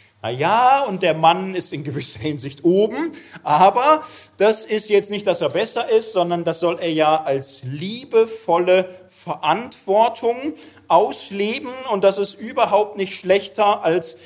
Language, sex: German, male